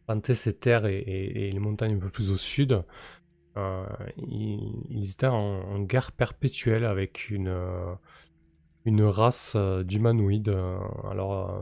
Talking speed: 135 wpm